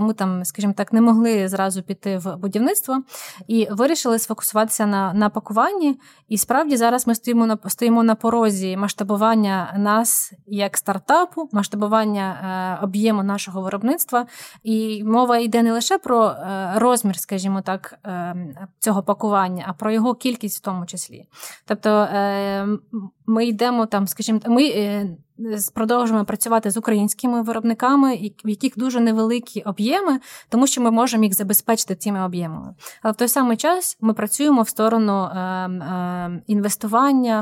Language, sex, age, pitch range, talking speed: Ukrainian, female, 20-39, 195-235 Hz, 145 wpm